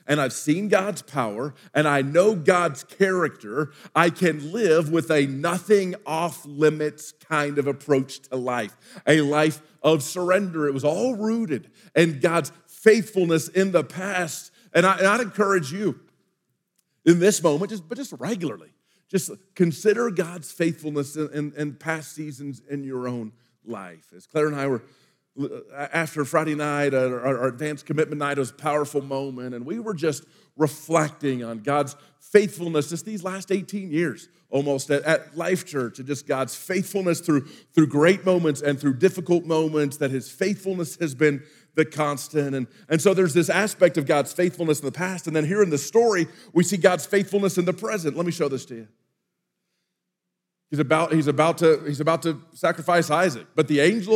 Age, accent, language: 40-59, American, English